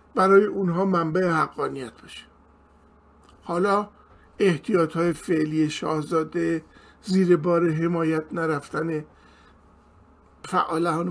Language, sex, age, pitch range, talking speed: Persian, male, 50-69, 155-210 Hz, 80 wpm